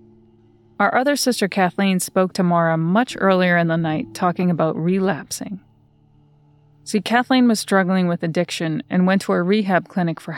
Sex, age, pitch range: female, 30-49, 155-205 Hz